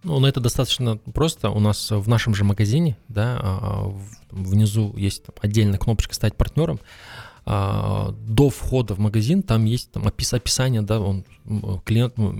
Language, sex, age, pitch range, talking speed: Russian, male, 20-39, 100-115 Hz, 130 wpm